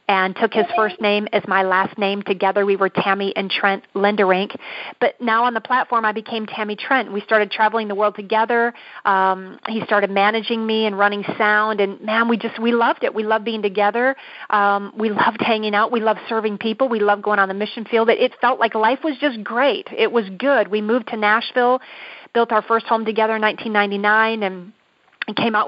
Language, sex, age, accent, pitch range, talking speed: English, female, 40-59, American, 205-240 Hz, 215 wpm